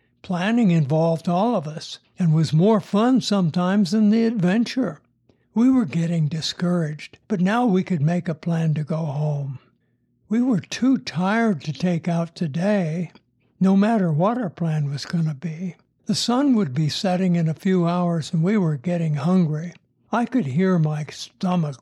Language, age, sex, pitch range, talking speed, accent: English, 60-79, male, 155-200 Hz, 175 wpm, American